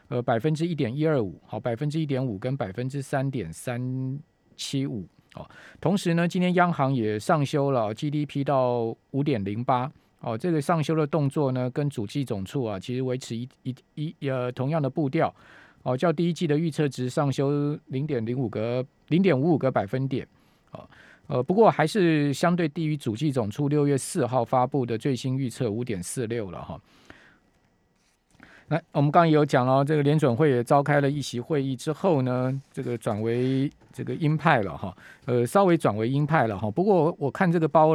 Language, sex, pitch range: Chinese, male, 120-155 Hz